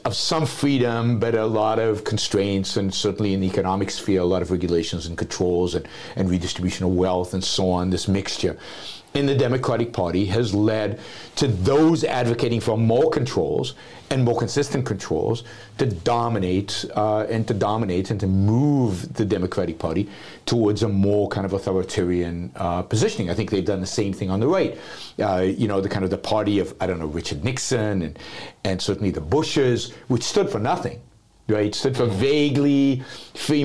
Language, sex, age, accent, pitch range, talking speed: English, male, 50-69, American, 95-125 Hz, 185 wpm